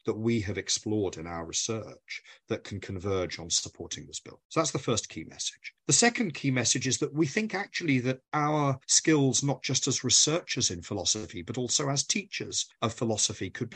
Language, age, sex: English, 40-59, male